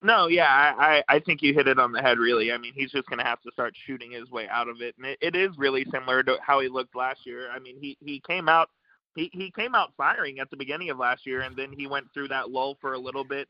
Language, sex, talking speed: English, male, 300 wpm